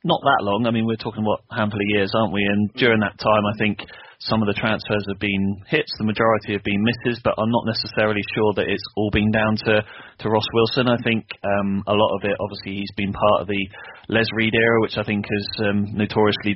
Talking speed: 245 wpm